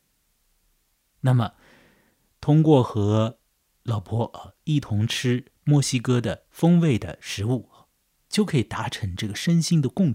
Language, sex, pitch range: Chinese, male, 95-125 Hz